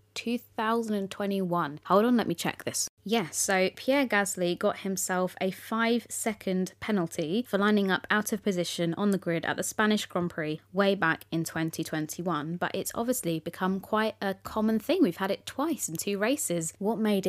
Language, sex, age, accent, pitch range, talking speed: English, female, 20-39, British, 175-210 Hz, 180 wpm